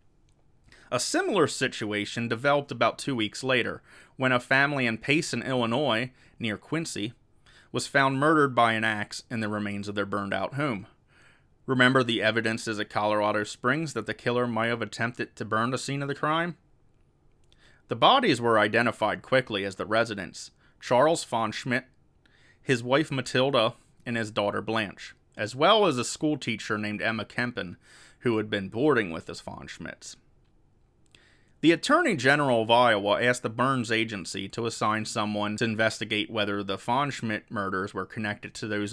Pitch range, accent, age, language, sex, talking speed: 105-125 Hz, American, 30-49, English, male, 160 wpm